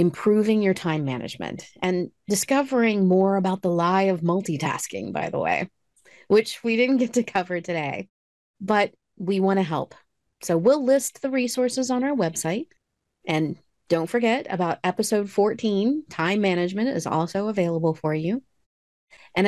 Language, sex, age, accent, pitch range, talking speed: English, female, 30-49, American, 170-260 Hz, 150 wpm